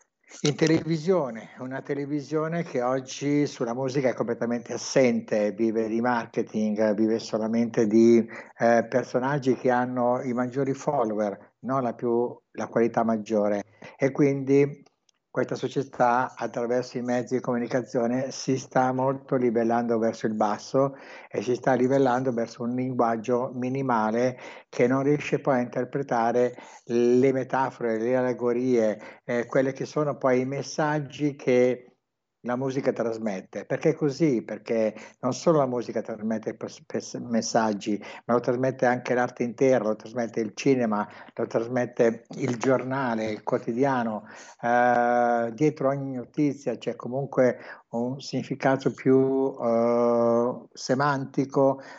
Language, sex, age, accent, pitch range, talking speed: Italian, male, 60-79, native, 115-135 Hz, 125 wpm